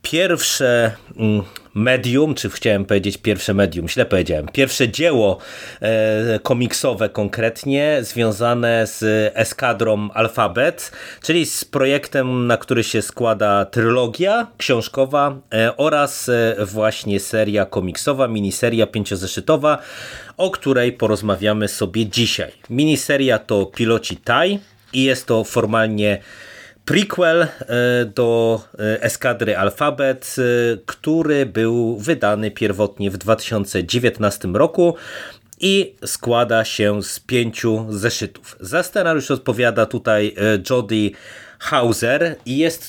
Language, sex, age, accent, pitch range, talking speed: Polish, male, 30-49, native, 105-130 Hz, 95 wpm